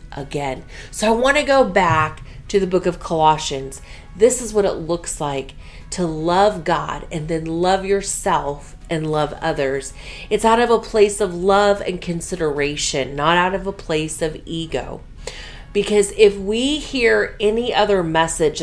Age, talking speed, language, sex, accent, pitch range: 30-49, 165 wpm, English, female, American, 165-235 Hz